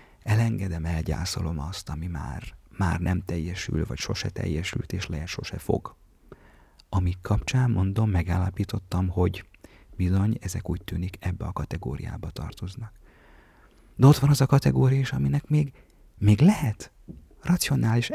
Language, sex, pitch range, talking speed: Hungarian, male, 90-125 Hz, 130 wpm